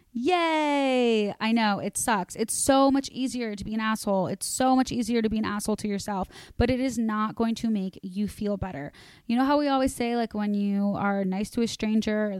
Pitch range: 210-245 Hz